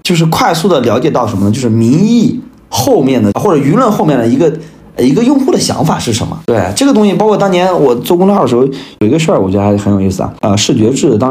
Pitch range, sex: 115-185 Hz, male